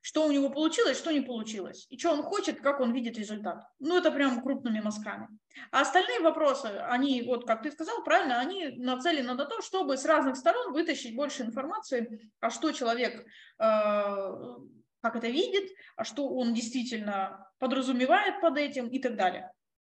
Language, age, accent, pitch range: Russian, 20-39, native, 230-290 Hz